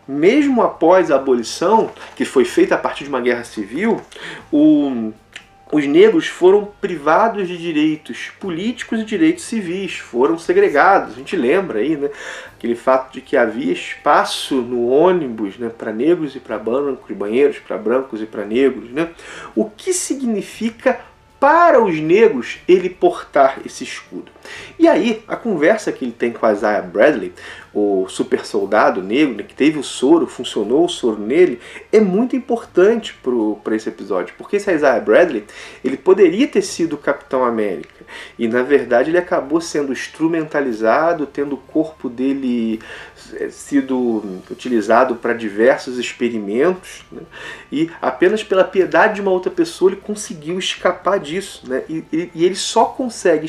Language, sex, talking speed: Portuguese, male, 155 wpm